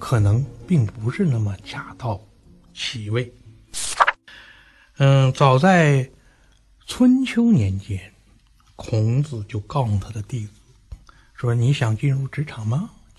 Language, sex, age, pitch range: Chinese, male, 60-79, 110-155 Hz